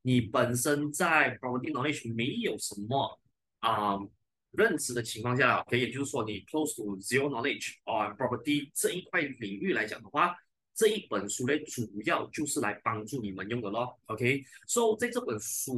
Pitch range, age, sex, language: 110-140 Hz, 20-39, male, Chinese